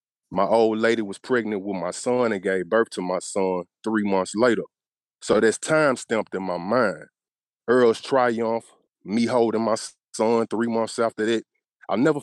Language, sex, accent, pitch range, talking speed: English, male, American, 105-125 Hz, 175 wpm